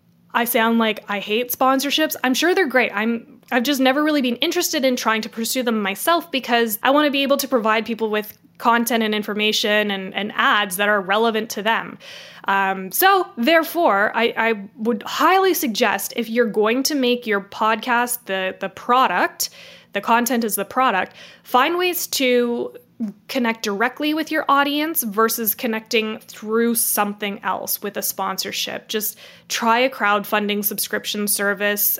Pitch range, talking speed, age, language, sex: 205-260 Hz, 165 wpm, 10-29, English, female